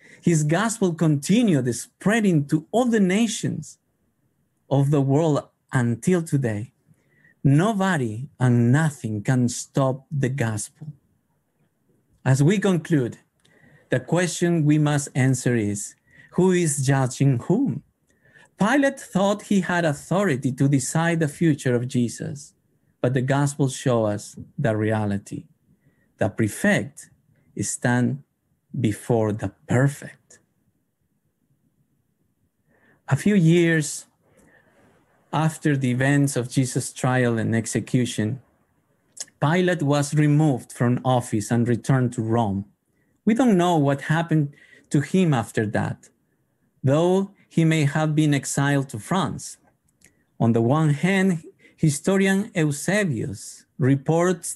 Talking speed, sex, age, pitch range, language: 110 wpm, male, 50-69, 125-170 Hz, English